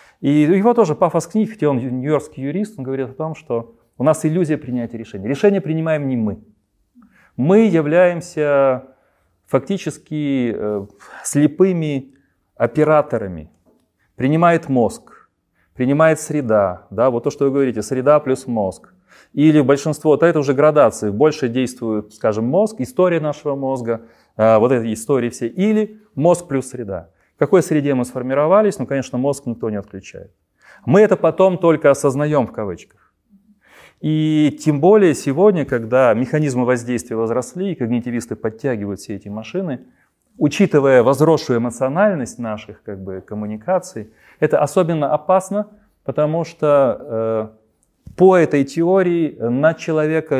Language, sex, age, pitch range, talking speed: Ukrainian, male, 30-49, 120-160 Hz, 135 wpm